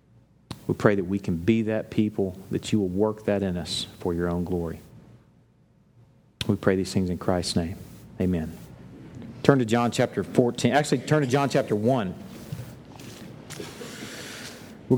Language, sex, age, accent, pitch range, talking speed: English, male, 40-59, American, 105-130 Hz, 155 wpm